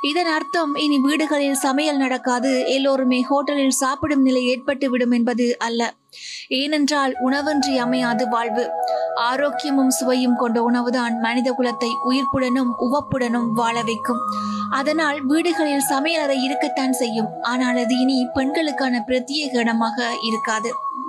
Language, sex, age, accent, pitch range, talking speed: Tamil, female, 20-39, native, 245-280 Hz, 115 wpm